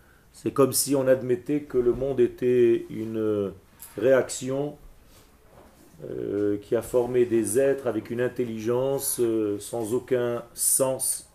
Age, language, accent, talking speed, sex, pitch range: 40-59, French, French, 125 wpm, male, 105-145 Hz